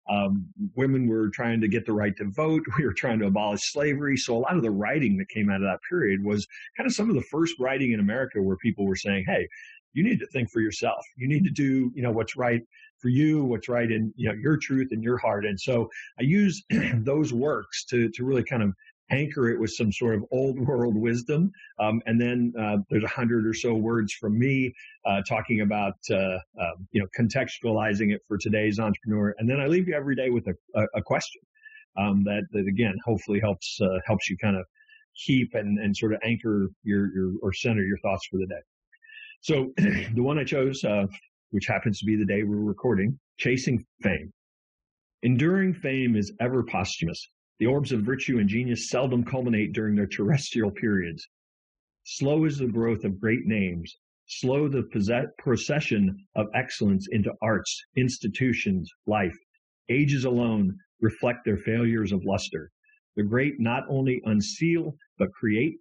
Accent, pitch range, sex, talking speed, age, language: American, 105-130 Hz, male, 195 wpm, 50-69, English